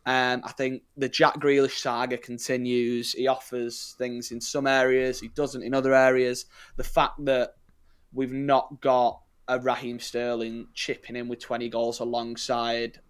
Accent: British